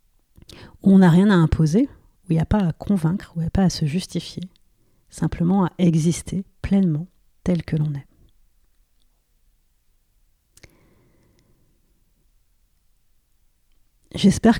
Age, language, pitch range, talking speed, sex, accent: 40-59, French, 160-190 Hz, 125 wpm, female, French